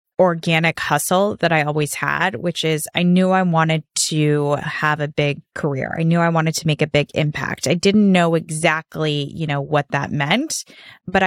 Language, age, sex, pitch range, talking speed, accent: English, 20-39, female, 150-180 Hz, 190 wpm, American